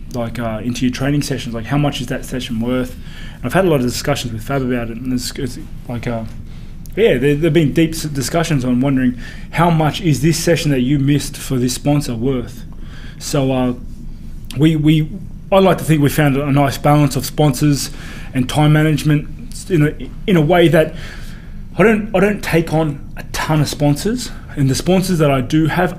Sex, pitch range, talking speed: male, 125-155 Hz, 210 wpm